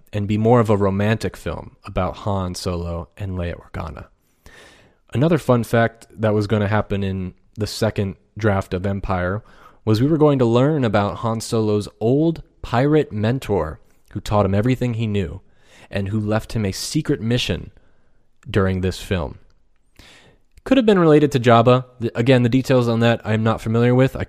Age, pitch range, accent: 20-39, 100-120 Hz, American